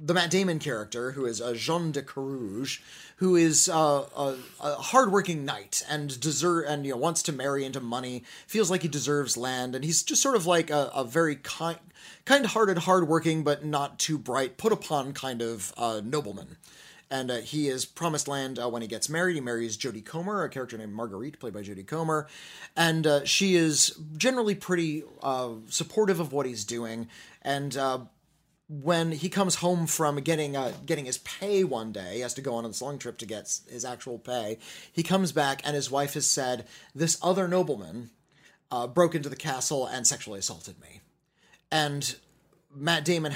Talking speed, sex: 195 wpm, male